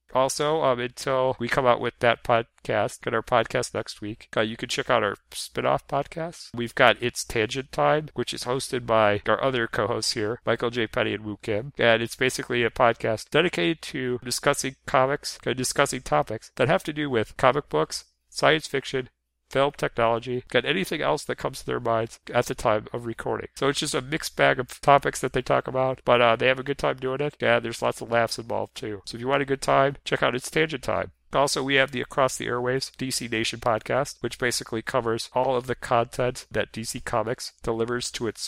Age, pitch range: 40-59, 115-135 Hz